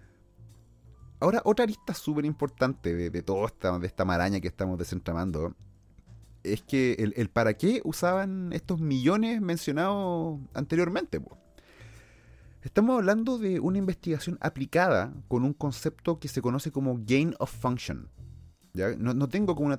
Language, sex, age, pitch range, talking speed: Spanish, male, 30-49, 100-140 Hz, 145 wpm